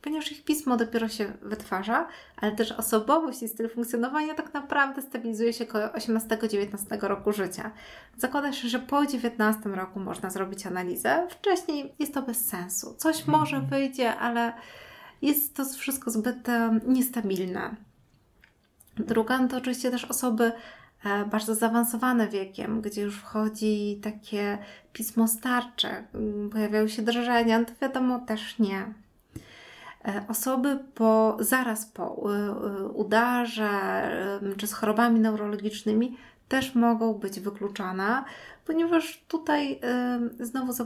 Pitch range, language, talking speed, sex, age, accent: 215-255 Hz, Polish, 125 wpm, female, 20-39, native